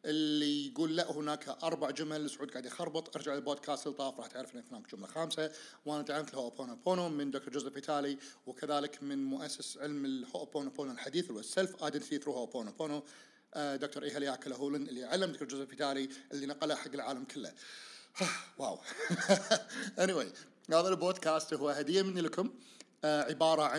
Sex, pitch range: male, 145-190 Hz